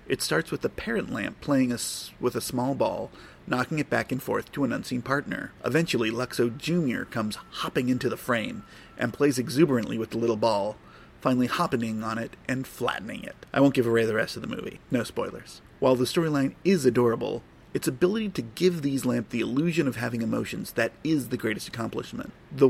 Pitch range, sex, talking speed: 115-140 Hz, male, 205 wpm